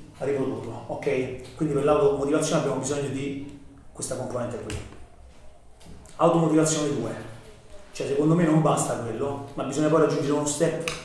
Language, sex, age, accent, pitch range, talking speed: Italian, male, 30-49, native, 130-150 Hz, 135 wpm